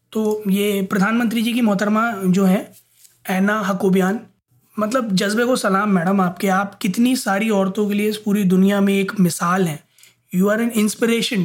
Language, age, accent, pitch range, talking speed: Hindi, 20-39, native, 190-235 Hz, 175 wpm